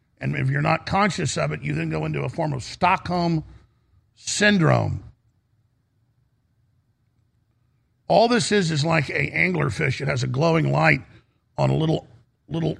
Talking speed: 150 wpm